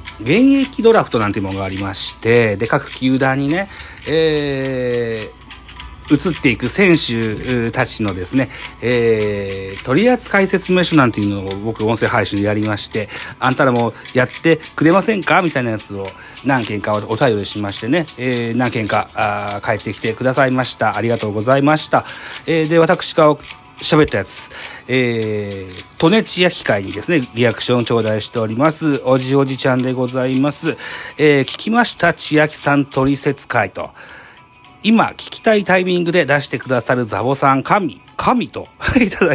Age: 40-59